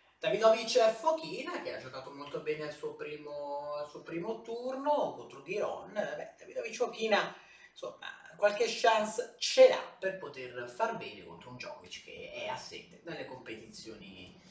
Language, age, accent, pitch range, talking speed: Italian, 30-49, native, 150-230 Hz, 140 wpm